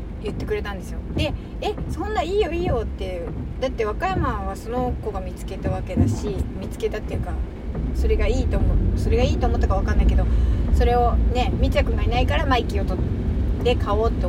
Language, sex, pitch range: Japanese, female, 75-85 Hz